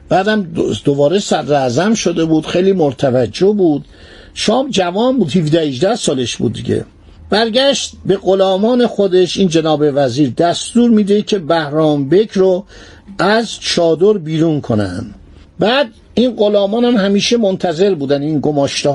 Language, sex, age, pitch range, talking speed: Persian, male, 50-69, 150-205 Hz, 135 wpm